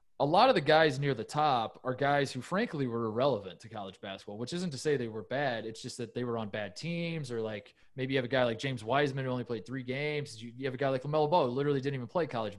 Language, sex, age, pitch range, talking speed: English, male, 20-39, 120-150 Hz, 285 wpm